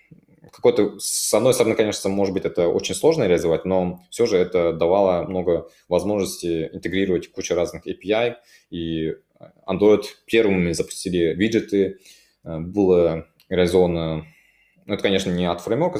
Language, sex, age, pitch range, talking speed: Russian, male, 20-39, 80-100 Hz, 130 wpm